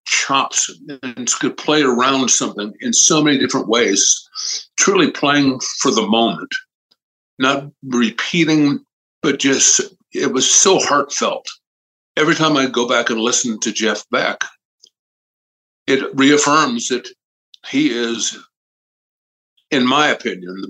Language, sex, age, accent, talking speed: English, male, 60-79, American, 125 wpm